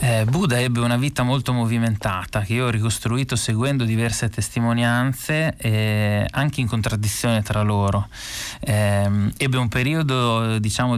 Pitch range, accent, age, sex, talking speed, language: 105-120 Hz, native, 20-39, male, 135 wpm, Italian